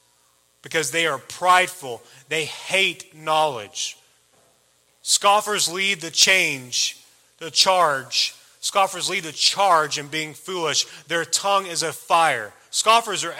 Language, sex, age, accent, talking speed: English, male, 30-49, American, 120 wpm